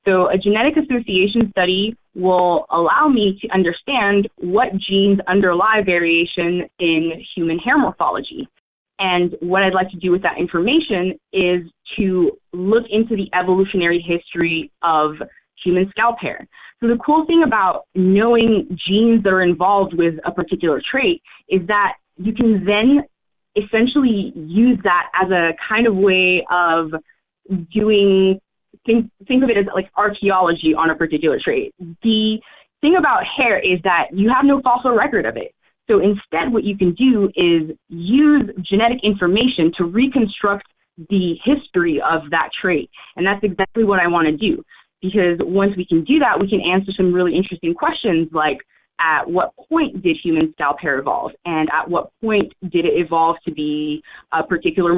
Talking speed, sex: 165 wpm, female